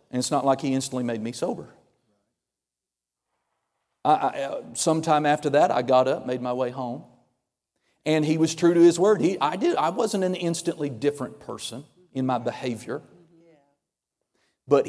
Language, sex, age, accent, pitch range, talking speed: English, male, 40-59, American, 125-165 Hz, 155 wpm